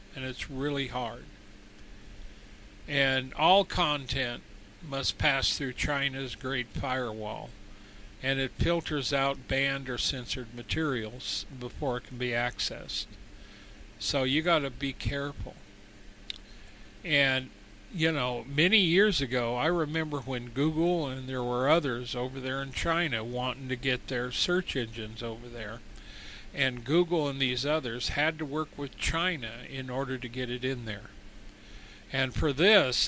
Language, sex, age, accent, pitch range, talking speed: English, male, 50-69, American, 120-145 Hz, 140 wpm